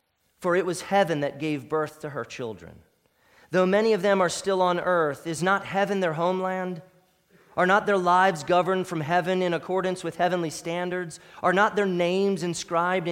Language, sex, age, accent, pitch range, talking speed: English, male, 30-49, American, 155-195 Hz, 185 wpm